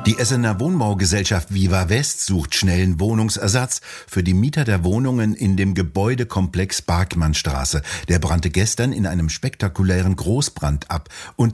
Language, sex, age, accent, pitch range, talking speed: German, male, 60-79, German, 85-105 Hz, 135 wpm